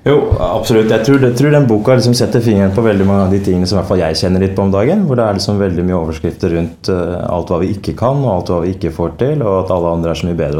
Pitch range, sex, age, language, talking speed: 85-100 Hz, male, 20-39, English, 315 wpm